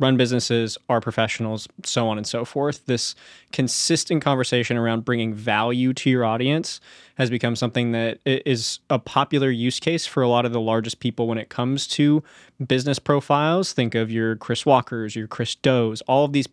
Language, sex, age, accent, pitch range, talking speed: English, male, 20-39, American, 120-145 Hz, 185 wpm